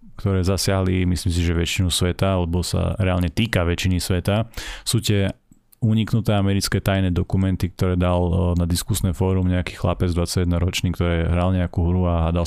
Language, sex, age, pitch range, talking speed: Slovak, male, 30-49, 90-105 Hz, 160 wpm